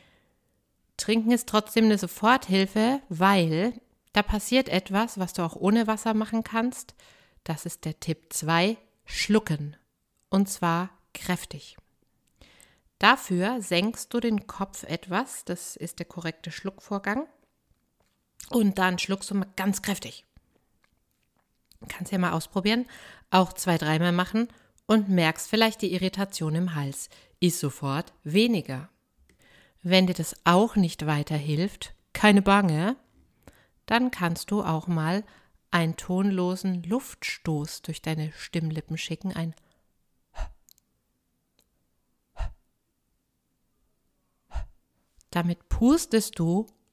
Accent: German